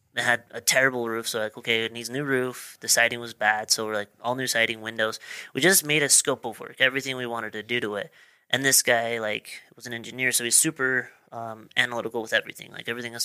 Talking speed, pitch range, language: 250 wpm, 110-125 Hz, English